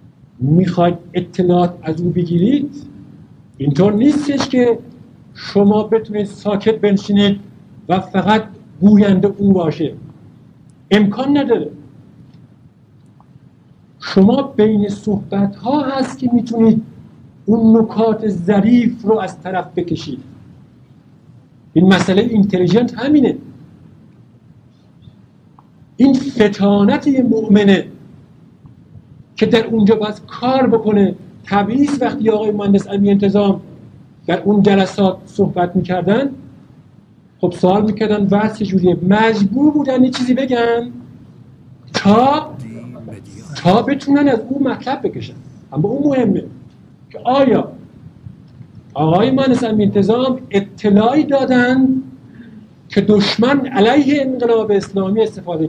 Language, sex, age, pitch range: Persian, male, 50-69, 180-235 Hz